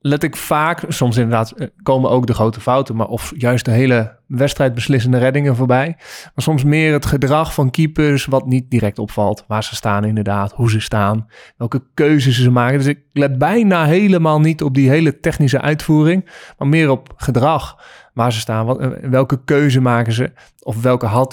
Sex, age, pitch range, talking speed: male, 20-39, 125-145 Hz, 190 wpm